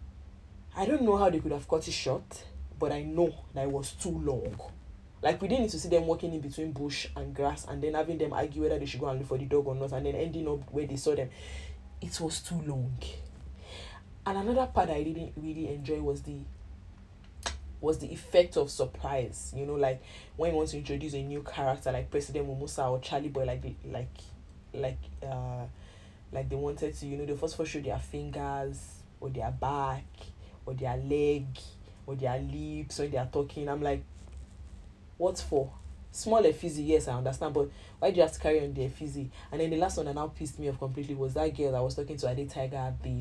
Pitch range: 95-155 Hz